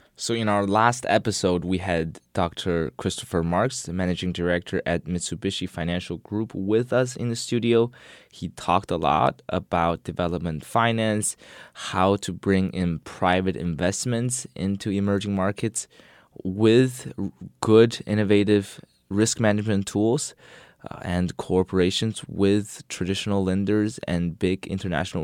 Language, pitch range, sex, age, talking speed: English, 90-105 Hz, male, 20-39, 125 wpm